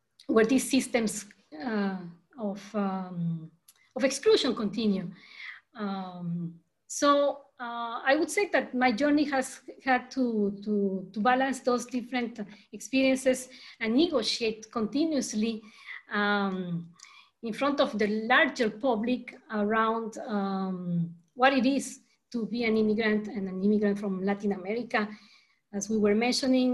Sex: female